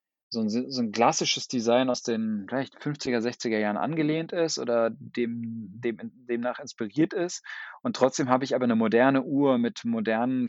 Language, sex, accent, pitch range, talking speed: German, male, German, 115-135 Hz, 170 wpm